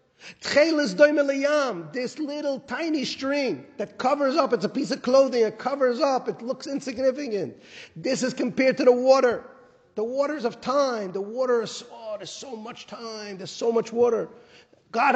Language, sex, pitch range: English, male, 225-275 Hz